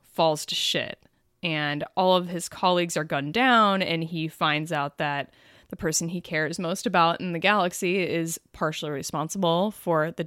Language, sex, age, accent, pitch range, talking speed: English, female, 20-39, American, 160-200 Hz, 175 wpm